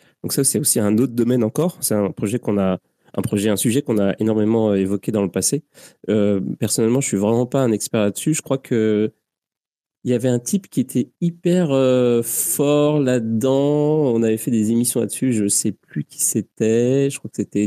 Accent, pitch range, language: French, 105-125 Hz, French